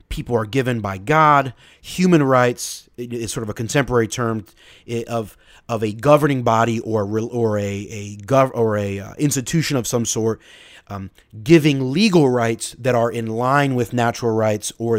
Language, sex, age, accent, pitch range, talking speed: English, male, 30-49, American, 110-135 Hz, 165 wpm